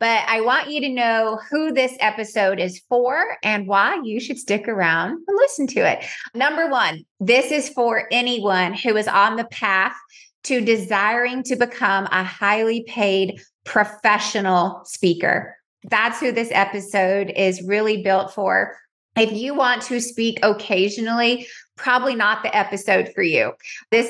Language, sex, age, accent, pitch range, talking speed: English, female, 30-49, American, 195-240 Hz, 155 wpm